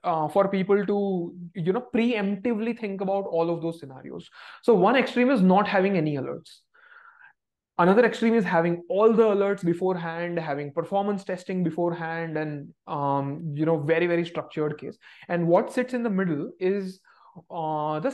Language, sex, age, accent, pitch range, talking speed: English, male, 20-39, Indian, 160-205 Hz, 165 wpm